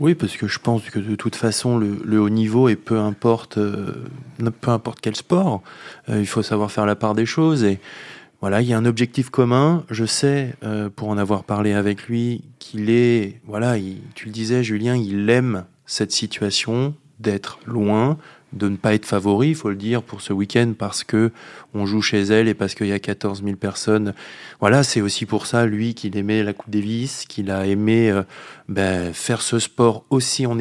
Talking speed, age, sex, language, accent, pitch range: 205 wpm, 20-39, male, French, French, 105-120 Hz